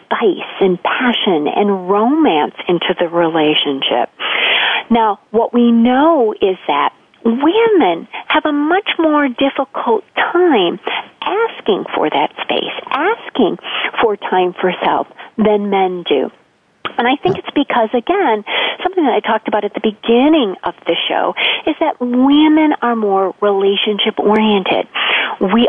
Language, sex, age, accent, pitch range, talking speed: English, female, 40-59, American, 210-280 Hz, 130 wpm